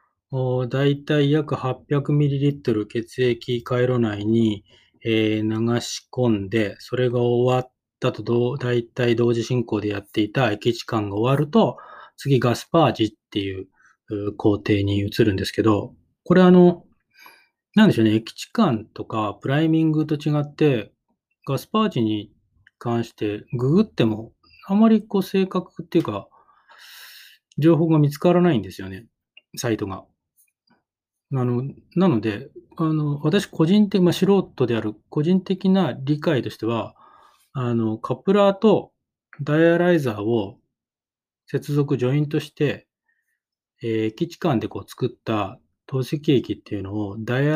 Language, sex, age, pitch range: Japanese, male, 20-39, 110-160 Hz